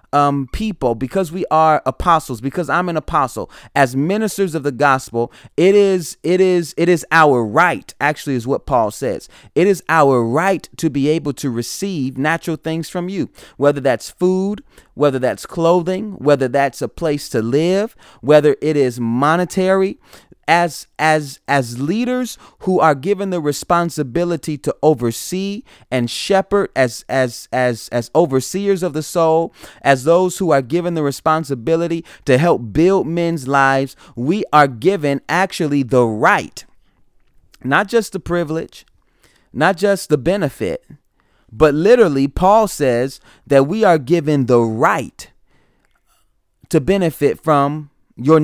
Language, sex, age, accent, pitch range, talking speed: English, male, 30-49, American, 140-180 Hz, 145 wpm